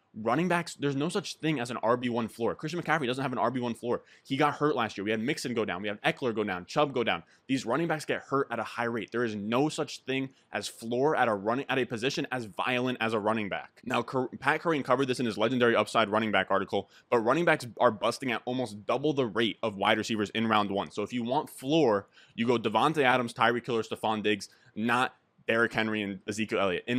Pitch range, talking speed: 110-145 Hz, 245 wpm